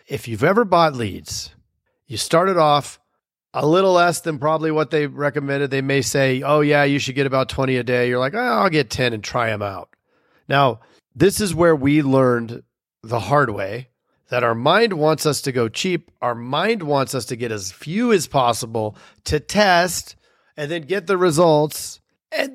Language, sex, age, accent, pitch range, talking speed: English, male, 40-59, American, 120-160 Hz, 190 wpm